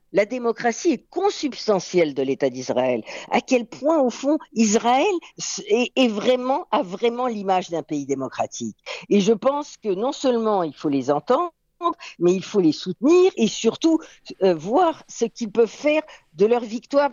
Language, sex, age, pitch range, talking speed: French, female, 50-69, 175-250 Hz, 160 wpm